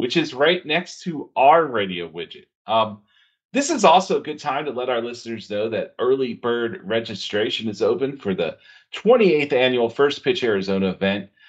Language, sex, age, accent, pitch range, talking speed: English, male, 40-59, American, 105-140 Hz, 180 wpm